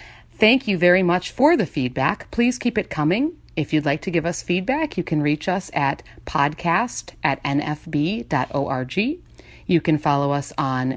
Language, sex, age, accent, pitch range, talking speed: English, female, 30-49, American, 140-180 Hz, 170 wpm